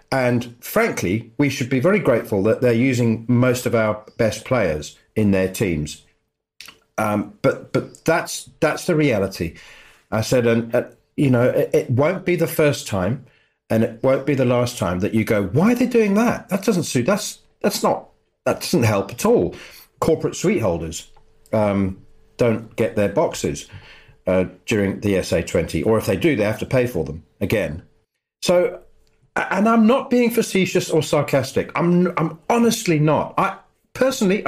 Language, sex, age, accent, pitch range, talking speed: English, male, 40-59, British, 105-150 Hz, 180 wpm